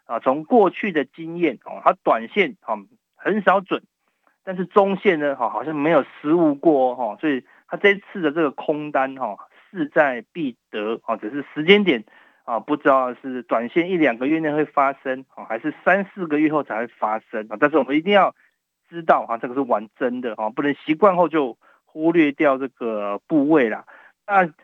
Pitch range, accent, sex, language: 130-175 Hz, native, male, Chinese